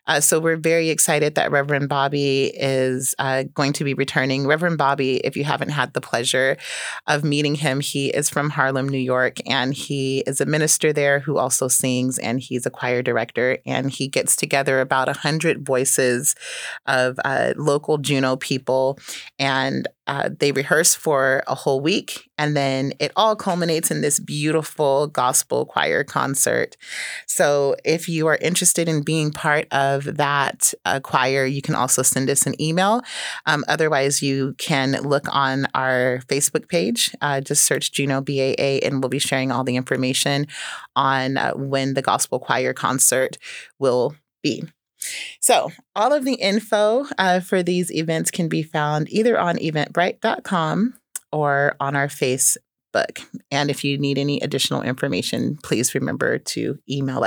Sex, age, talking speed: female, 30-49, 165 wpm